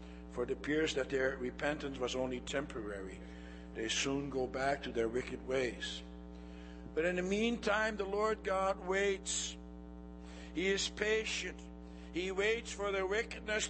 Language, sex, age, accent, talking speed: English, male, 60-79, American, 145 wpm